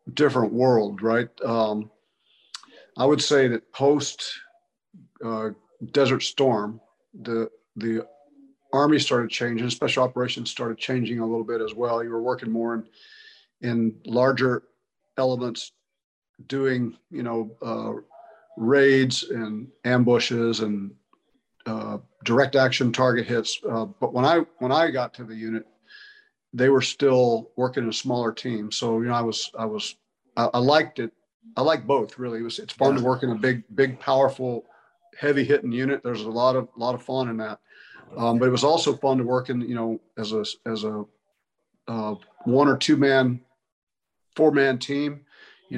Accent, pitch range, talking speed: American, 115-135 Hz, 170 wpm